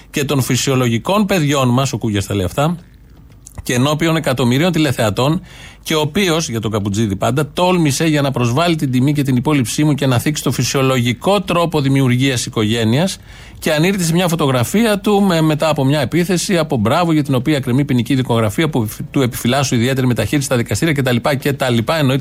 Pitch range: 125-160 Hz